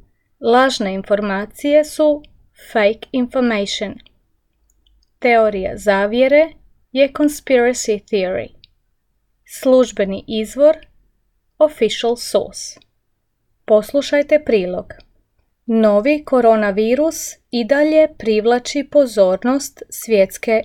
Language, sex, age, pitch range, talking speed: Croatian, female, 30-49, 205-260 Hz, 65 wpm